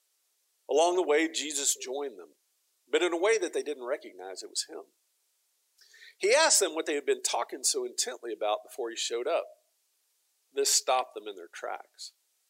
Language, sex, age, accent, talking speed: English, male, 50-69, American, 180 wpm